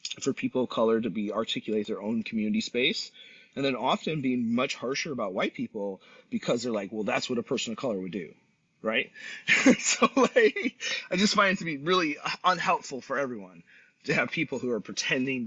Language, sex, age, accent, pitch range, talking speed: English, male, 30-49, American, 115-185 Hz, 200 wpm